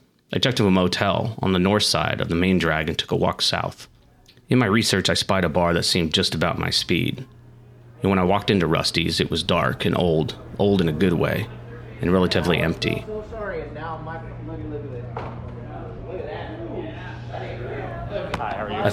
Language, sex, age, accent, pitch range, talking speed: English, male, 30-49, American, 85-110 Hz, 160 wpm